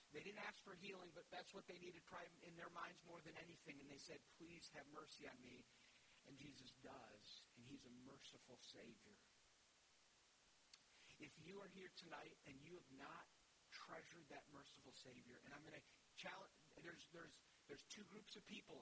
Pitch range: 140-195 Hz